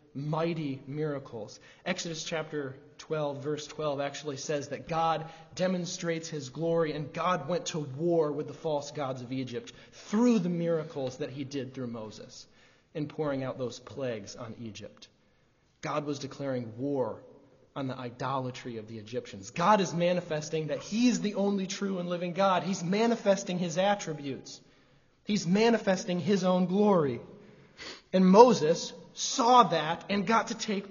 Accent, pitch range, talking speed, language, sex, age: American, 135-175 Hz, 155 wpm, English, male, 30-49